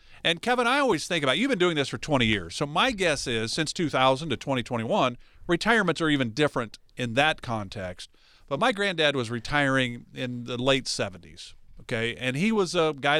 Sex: male